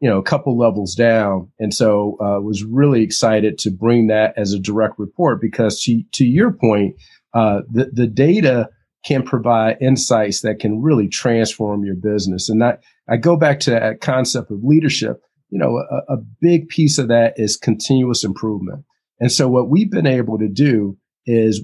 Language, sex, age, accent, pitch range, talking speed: English, male, 50-69, American, 110-135 Hz, 190 wpm